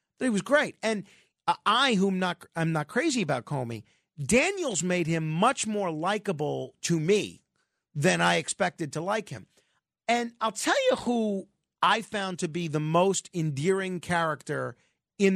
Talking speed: 160 wpm